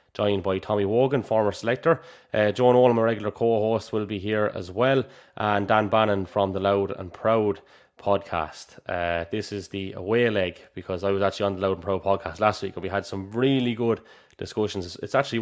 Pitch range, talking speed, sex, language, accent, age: 95-115 Hz, 205 wpm, male, English, Irish, 20-39